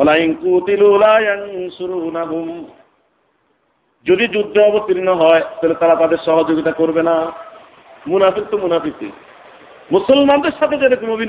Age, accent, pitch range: 50-69, native, 170-240 Hz